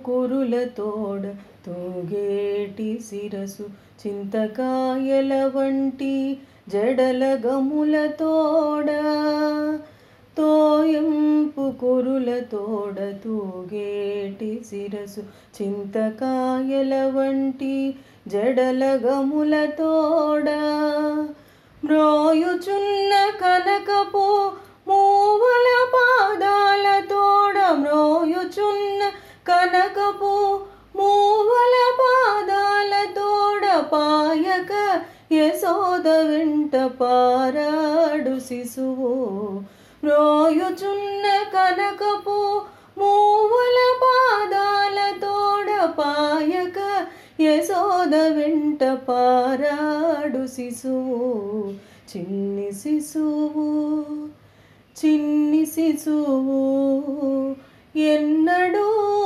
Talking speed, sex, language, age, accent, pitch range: 35 wpm, female, Telugu, 30-49, native, 260-390 Hz